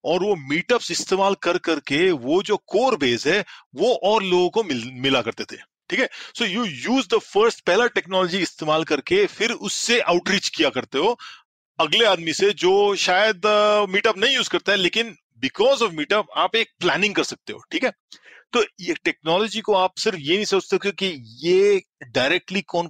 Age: 40-59